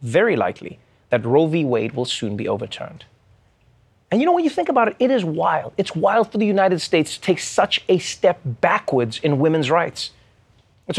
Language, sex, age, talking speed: English, male, 30-49, 200 wpm